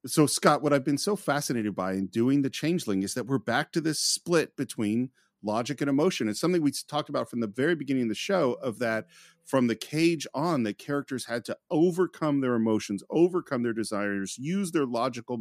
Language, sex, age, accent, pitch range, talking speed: English, male, 40-59, American, 115-150 Hz, 210 wpm